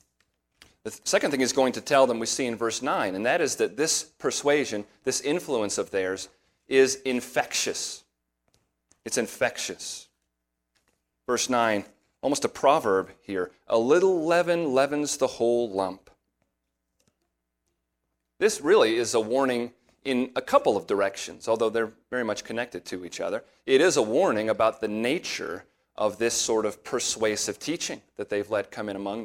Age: 30-49